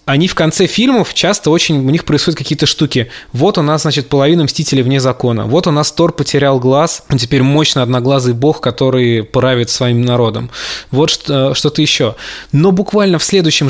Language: Russian